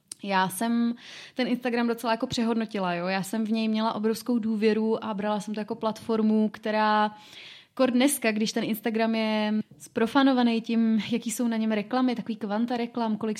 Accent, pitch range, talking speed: native, 215-235 Hz, 170 wpm